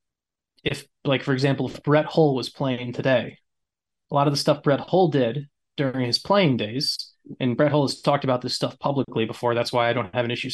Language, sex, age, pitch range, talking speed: English, male, 20-39, 125-150 Hz, 220 wpm